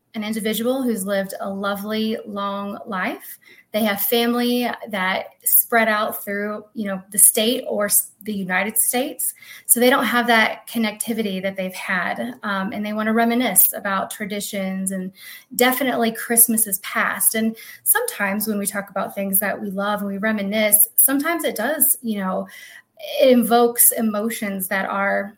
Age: 20-39